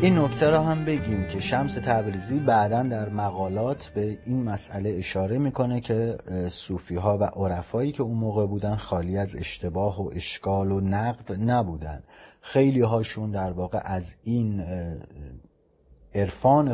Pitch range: 95-125 Hz